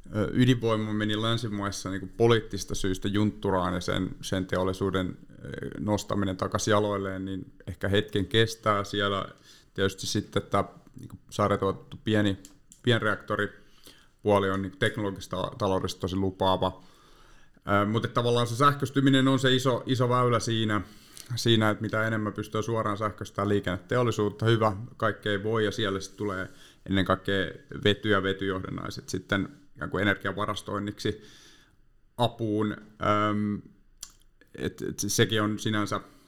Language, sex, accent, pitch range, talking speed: Finnish, male, native, 95-110 Hz, 115 wpm